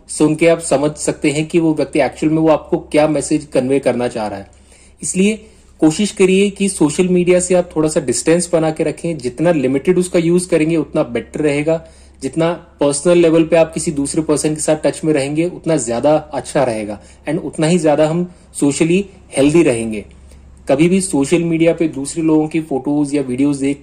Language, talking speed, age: Hindi, 200 wpm, 30-49